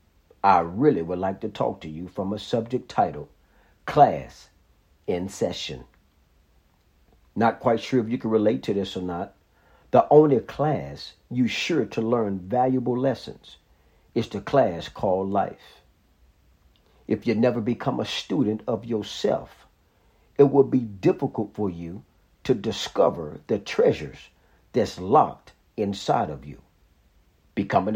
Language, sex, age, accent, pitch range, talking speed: English, male, 50-69, American, 80-125 Hz, 135 wpm